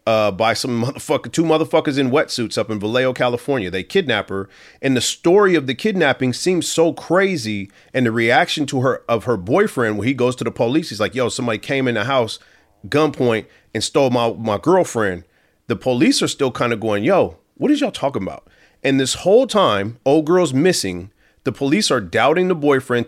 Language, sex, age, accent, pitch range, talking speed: English, male, 40-59, American, 120-170 Hz, 205 wpm